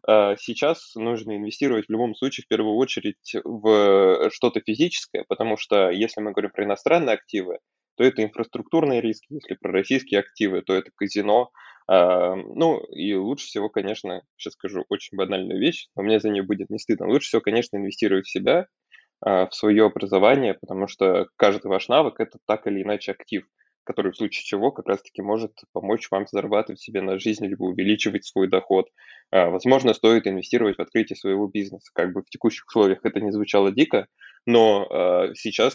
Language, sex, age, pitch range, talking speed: Russian, male, 20-39, 95-110 Hz, 170 wpm